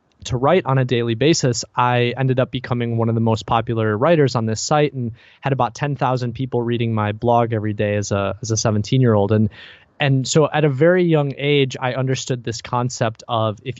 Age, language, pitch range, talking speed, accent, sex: 20-39, English, 110-130 Hz, 210 wpm, American, male